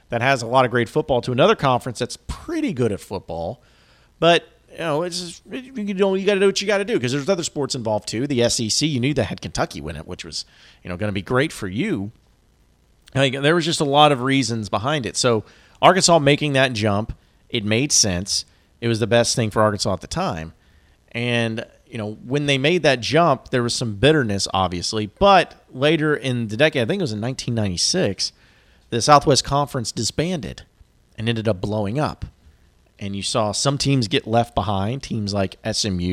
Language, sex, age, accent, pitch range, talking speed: English, male, 40-59, American, 100-135 Hz, 215 wpm